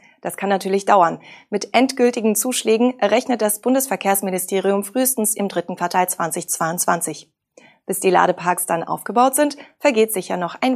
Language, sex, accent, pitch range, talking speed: German, female, German, 190-250 Hz, 140 wpm